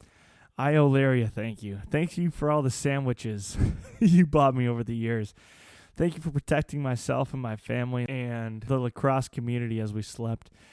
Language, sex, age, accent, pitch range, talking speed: English, male, 20-39, American, 115-145 Hz, 175 wpm